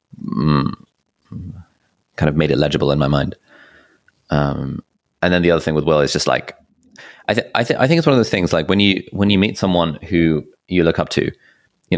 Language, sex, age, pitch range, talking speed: English, male, 30-49, 75-80 Hz, 215 wpm